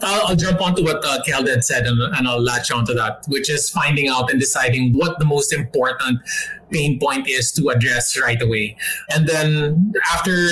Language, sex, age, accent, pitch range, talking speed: English, male, 20-39, Filipino, 130-180 Hz, 195 wpm